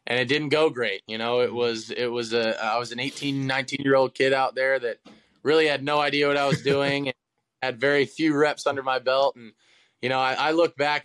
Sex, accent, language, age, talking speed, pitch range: male, American, English, 20-39, 250 wpm, 115-140 Hz